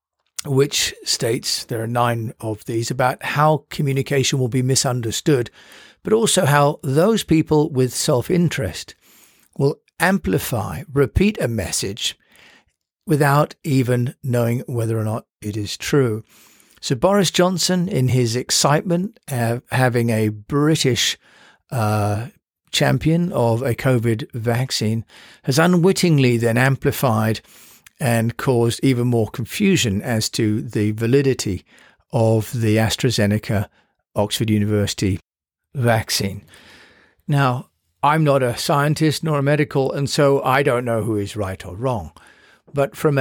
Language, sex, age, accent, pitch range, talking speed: English, male, 50-69, British, 110-145 Hz, 125 wpm